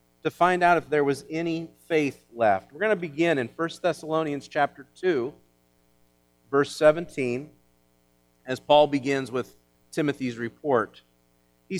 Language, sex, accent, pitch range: English, male, American, 120-205 Hz